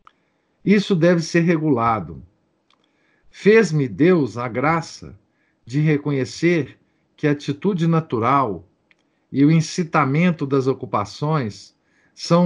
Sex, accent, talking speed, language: male, Brazilian, 95 wpm, Portuguese